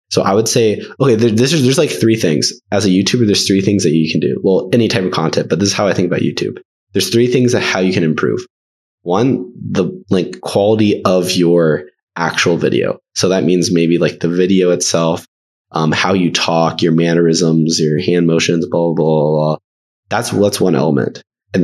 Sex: male